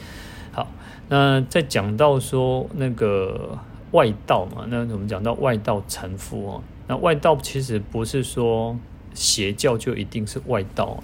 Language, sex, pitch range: Chinese, male, 100-115 Hz